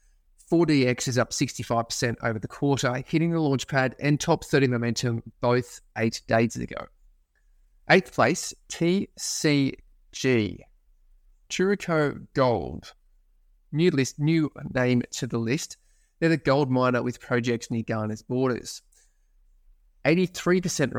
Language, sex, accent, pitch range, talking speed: English, male, Australian, 120-150 Hz, 115 wpm